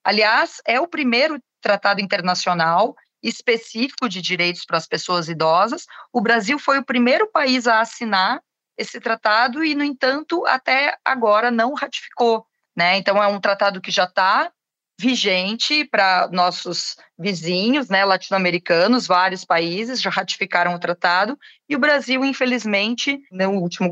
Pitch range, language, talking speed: 180-245 Hz, Portuguese, 140 wpm